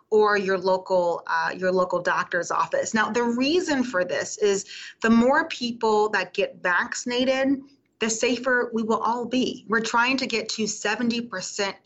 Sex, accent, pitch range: female, American, 185-225 Hz